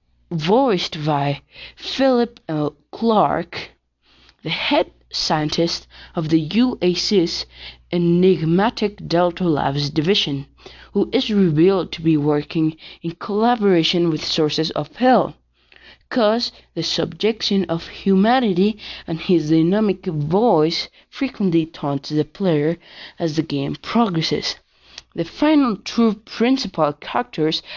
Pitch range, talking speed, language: 150-210 Hz, 105 wpm, English